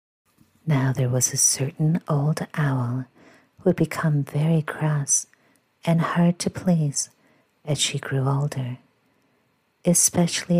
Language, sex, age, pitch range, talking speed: English, female, 50-69, 145-170 Hz, 120 wpm